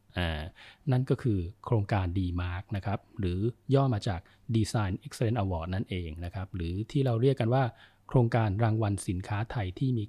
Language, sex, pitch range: Thai, male, 100-125 Hz